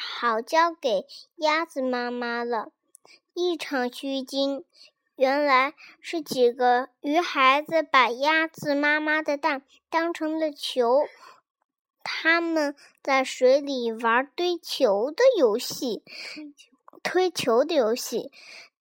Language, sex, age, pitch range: Chinese, male, 10-29, 260-330 Hz